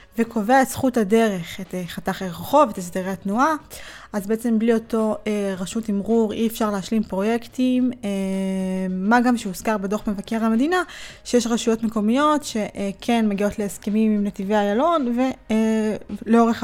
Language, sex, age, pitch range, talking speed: Hebrew, female, 20-39, 200-230 Hz, 130 wpm